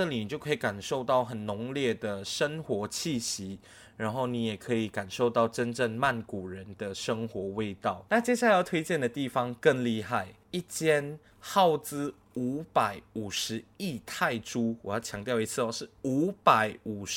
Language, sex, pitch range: Chinese, male, 110-145 Hz